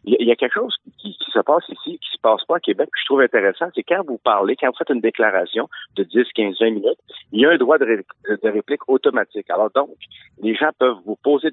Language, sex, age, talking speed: French, male, 50-69, 250 wpm